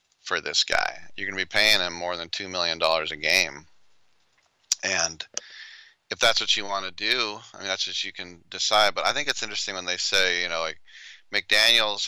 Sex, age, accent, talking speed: male, 40-59, American, 210 wpm